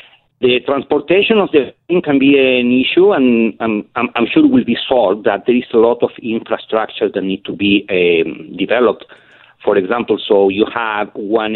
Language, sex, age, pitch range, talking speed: English, male, 50-69, 105-135 Hz, 190 wpm